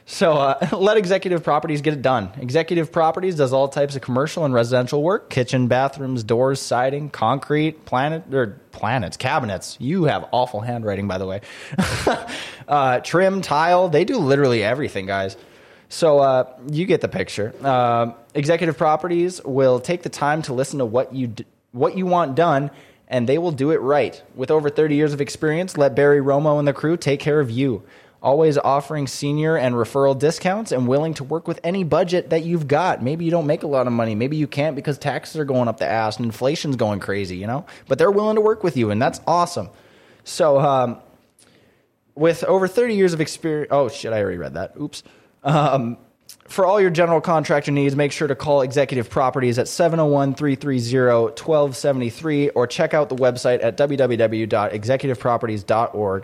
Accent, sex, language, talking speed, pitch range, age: American, male, English, 185 wpm, 125-155 Hz, 20-39